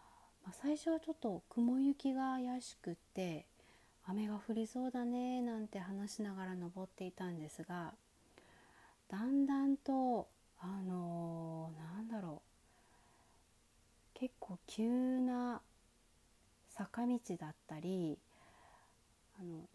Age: 40-59